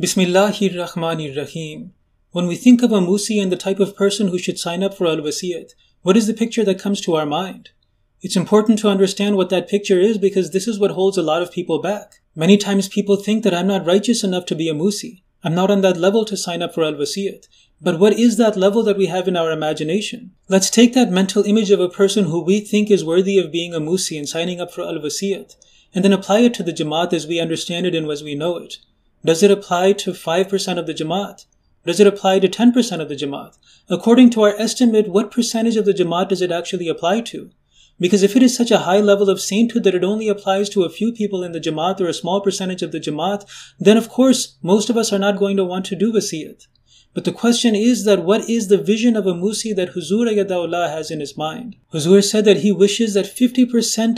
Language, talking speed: English, 240 wpm